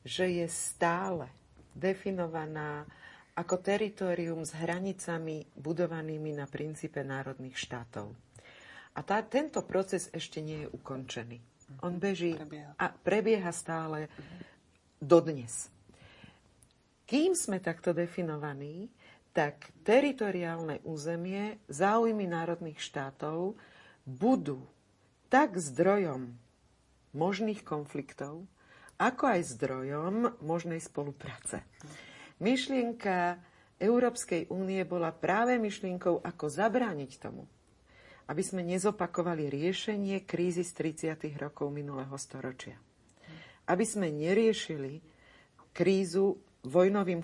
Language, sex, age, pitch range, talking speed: Slovak, female, 50-69, 145-185 Hz, 90 wpm